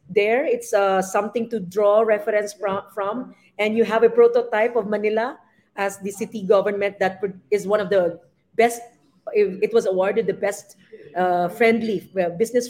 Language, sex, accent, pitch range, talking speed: English, female, Filipino, 195-225 Hz, 155 wpm